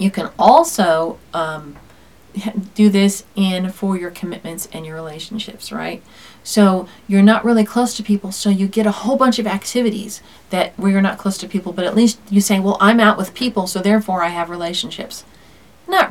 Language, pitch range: English, 195-240 Hz